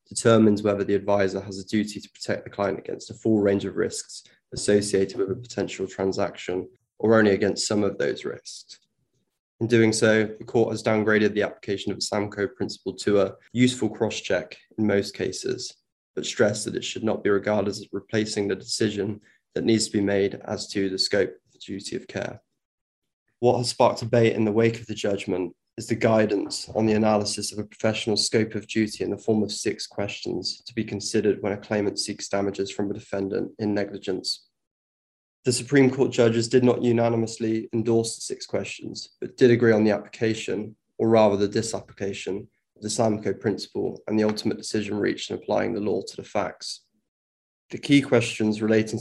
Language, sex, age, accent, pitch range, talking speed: English, male, 20-39, British, 100-115 Hz, 190 wpm